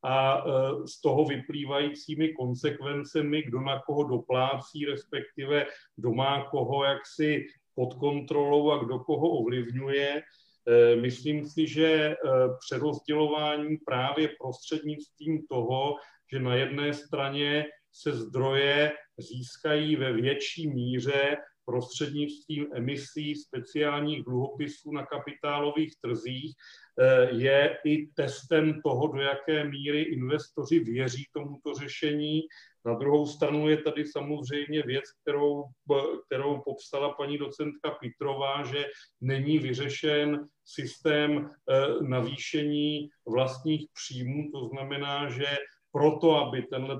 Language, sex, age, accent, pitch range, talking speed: Czech, male, 40-59, native, 135-150 Hz, 105 wpm